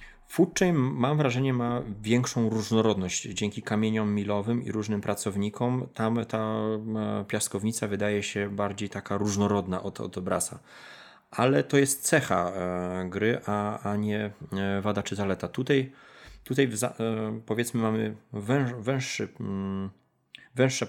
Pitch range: 100-120 Hz